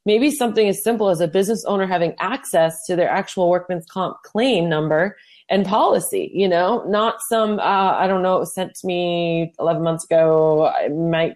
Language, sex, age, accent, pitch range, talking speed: English, female, 30-49, American, 170-210 Hz, 195 wpm